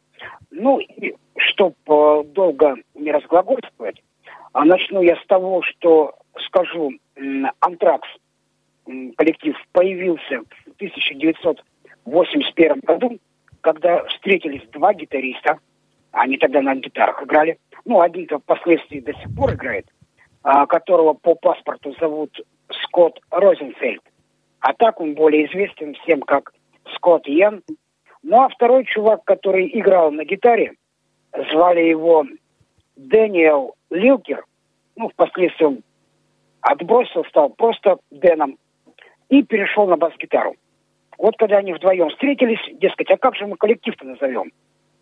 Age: 50-69